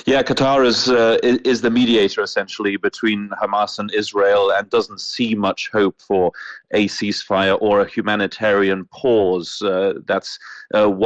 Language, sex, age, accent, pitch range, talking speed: English, male, 30-49, British, 100-115 Hz, 145 wpm